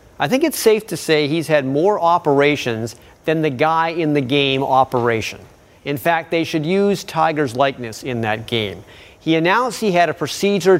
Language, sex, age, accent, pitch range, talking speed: English, male, 40-59, American, 130-170 Hz, 185 wpm